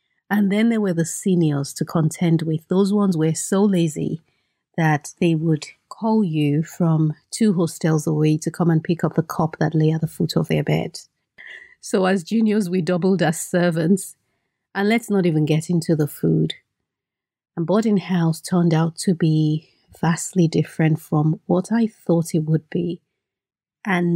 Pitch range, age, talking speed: 160-190 Hz, 30-49, 175 wpm